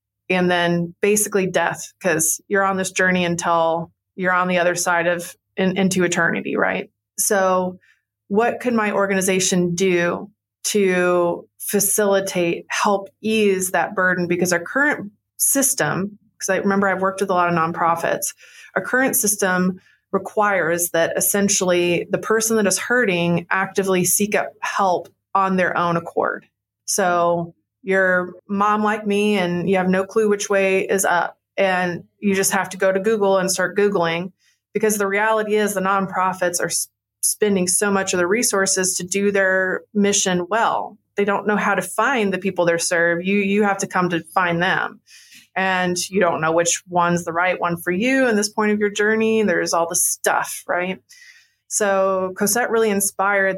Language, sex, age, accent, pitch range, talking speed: English, female, 30-49, American, 175-200 Hz, 170 wpm